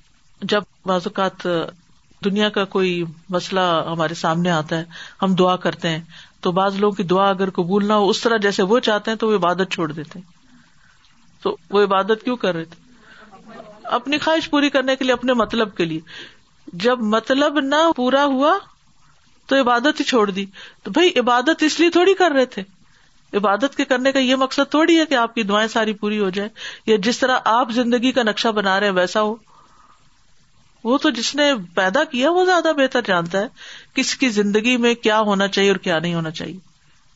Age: 50-69